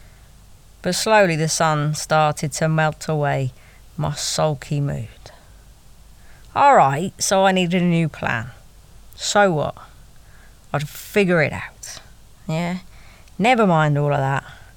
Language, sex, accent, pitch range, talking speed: English, female, British, 135-170 Hz, 125 wpm